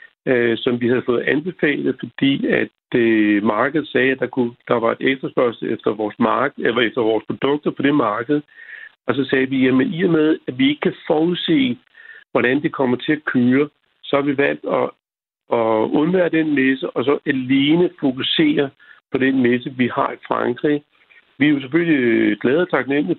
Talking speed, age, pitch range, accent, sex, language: 185 wpm, 60-79, 125-160 Hz, native, male, Danish